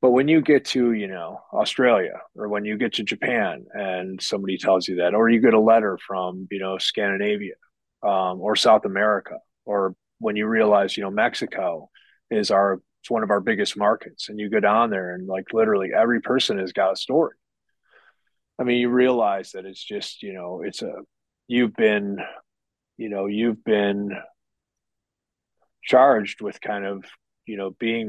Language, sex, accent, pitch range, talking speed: English, male, American, 100-120 Hz, 180 wpm